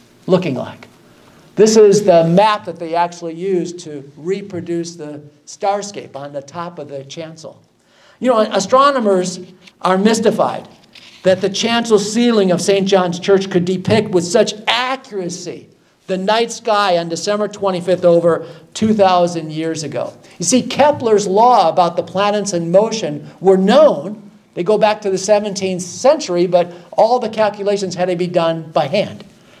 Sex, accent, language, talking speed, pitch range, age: male, American, English, 155 wpm, 165-210 Hz, 50-69